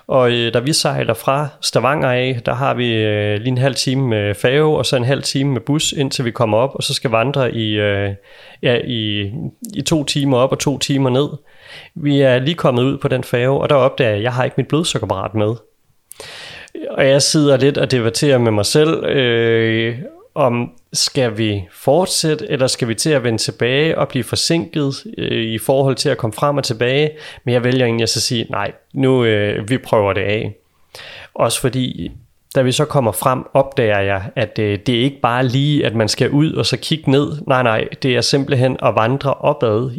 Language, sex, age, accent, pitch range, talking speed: Danish, male, 30-49, native, 115-145 Hz, 215 wpm